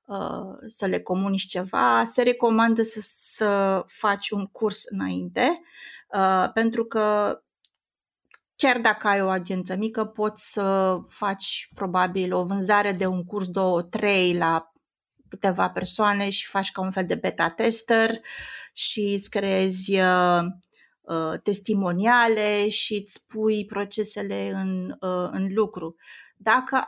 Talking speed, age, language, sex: 115 wpm, 30-49, Romanian, female